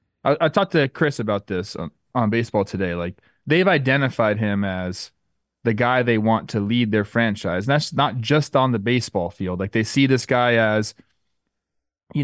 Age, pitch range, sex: 30-49, 110-140 Hz, male